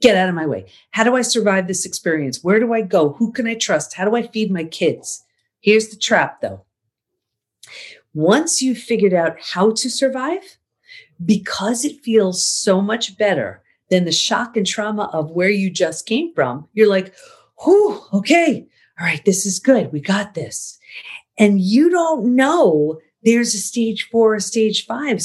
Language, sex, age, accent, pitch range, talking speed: English, female, 40-59, American, 175-230 Hz, 180 wpm